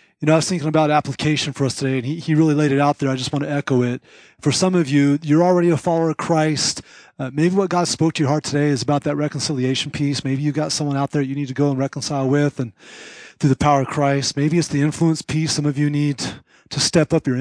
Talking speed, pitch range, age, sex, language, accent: 275 wpm, 135-160 Hz, 30-49, male, English, American